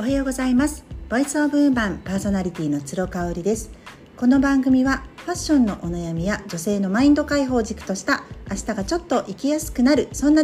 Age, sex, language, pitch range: 40-59, female, Japanese, 165-250 Hz